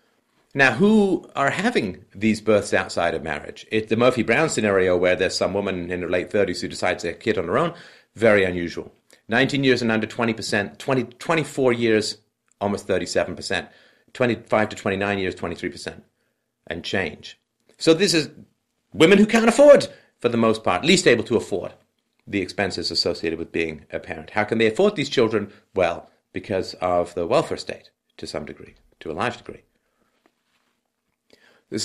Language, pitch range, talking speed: English, 100-130 Hz, 170 wpm